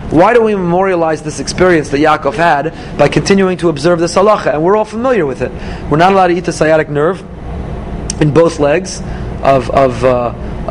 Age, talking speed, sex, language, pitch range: 30-49, 195 wpm, male, English, 145-180 Hz